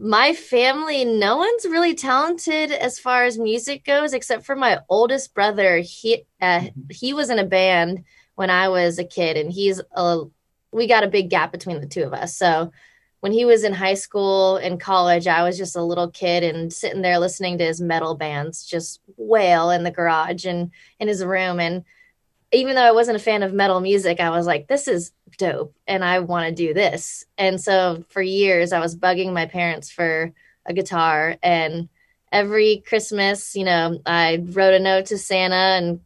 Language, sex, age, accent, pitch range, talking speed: English, female, 20-39, American, 170-205 Hz, 200 wpm